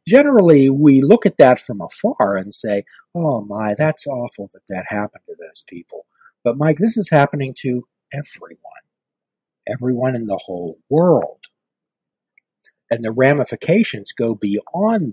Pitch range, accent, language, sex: 115-155 Hz, American, English, male